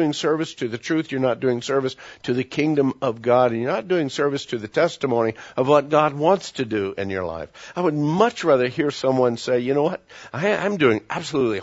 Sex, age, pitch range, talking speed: male, 60-79, 110-150 Hz, 225 wpm